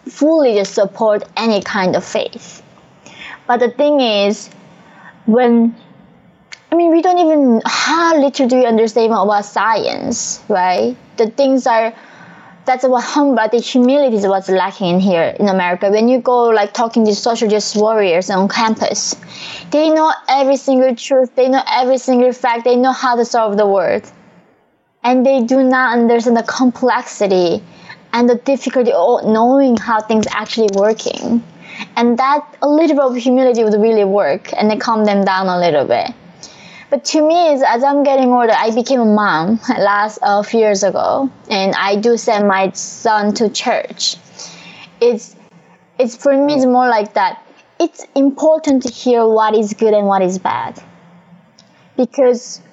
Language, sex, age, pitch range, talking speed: English, female, 20-39, 205-260 Hz, 165 wpm